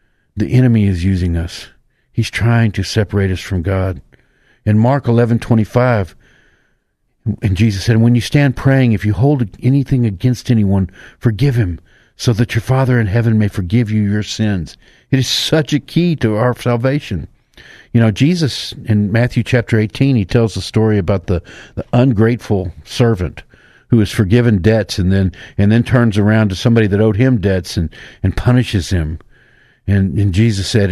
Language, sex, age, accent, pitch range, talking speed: English, male, 50-69, American, 95-120 Hz, 175 wpm